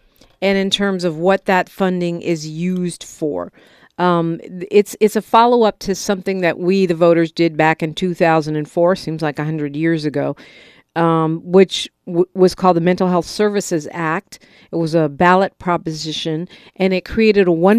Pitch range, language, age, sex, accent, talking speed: 175-210 Hz, English, 50-69, female, American, 160 wpm